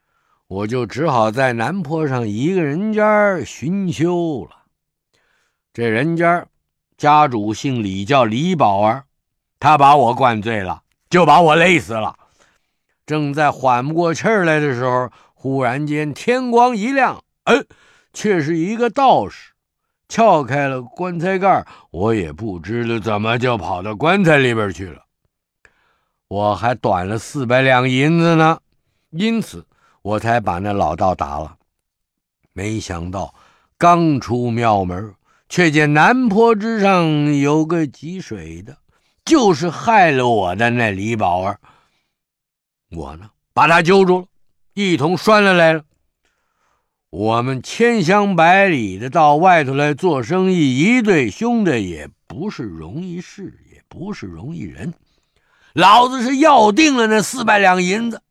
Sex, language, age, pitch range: male, English, 50-69, 110-180 Hz